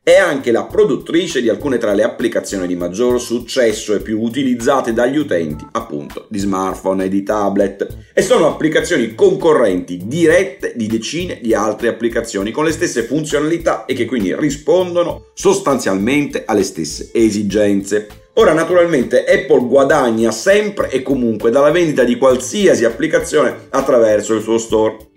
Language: Italian